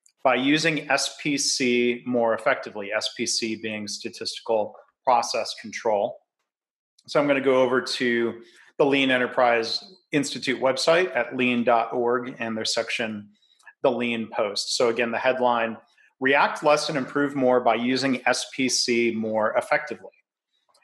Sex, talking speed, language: male, 125 wpm, English